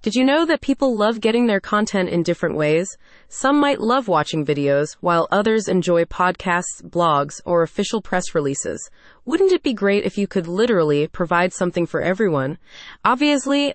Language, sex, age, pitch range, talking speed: English, female, 20-39, 175-235 Hz, 170 wpm